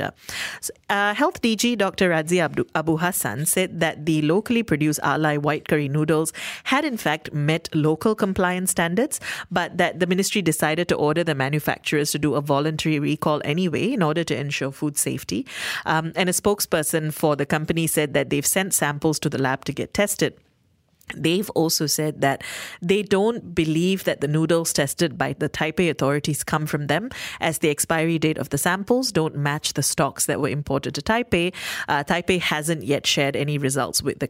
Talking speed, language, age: 185 wpm, English, 30-49